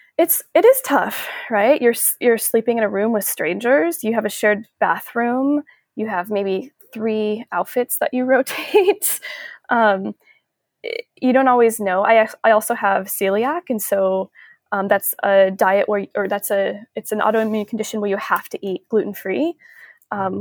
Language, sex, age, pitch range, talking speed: English, female, 20-39, 195-250 Hz, 175 wpm